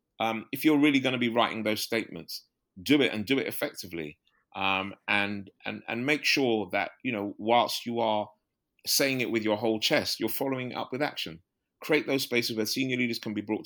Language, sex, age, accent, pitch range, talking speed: English, male, 30-49, British, 105-125 Hz, 210 wpm